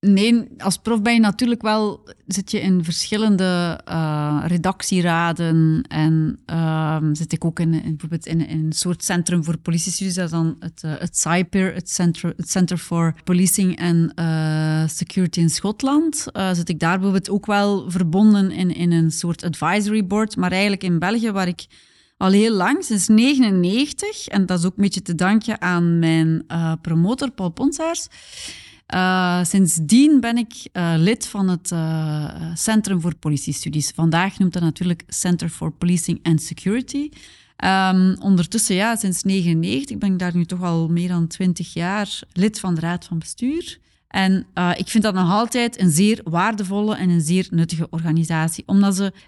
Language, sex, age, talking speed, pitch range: Dutch, female, 30-49, 170 wpm, 170-210 Hz